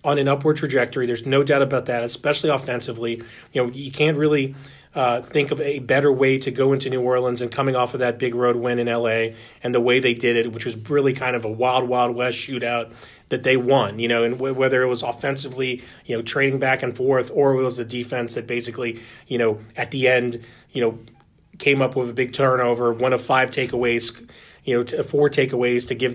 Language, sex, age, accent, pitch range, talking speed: English, male, 30-49, American, 120-140 Hz, 230 wpm